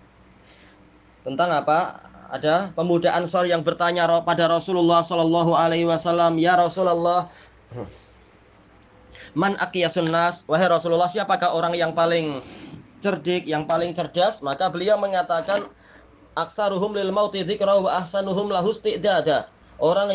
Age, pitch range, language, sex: 20-39, 170-200 Hz, Indonesian, male